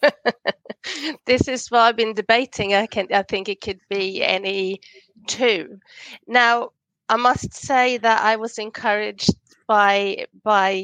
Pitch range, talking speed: 195-220 Hz, 140 wpm